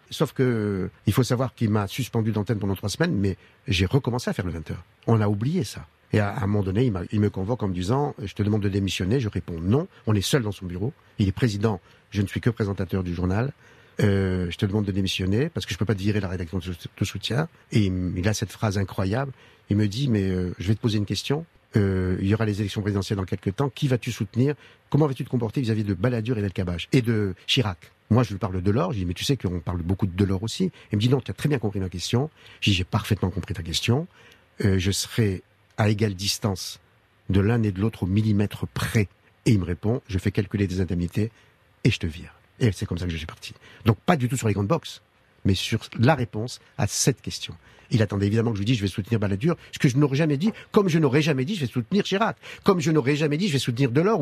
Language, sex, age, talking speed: French, male, 50-69, 270 wpm